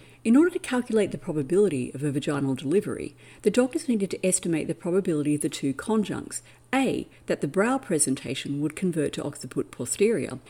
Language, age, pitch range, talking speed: English, 50-69, 150-210 Hz, 175 wpm